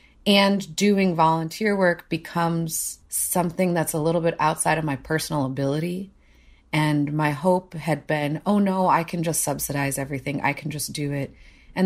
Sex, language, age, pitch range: female, English, 30-49, 145-165 Hz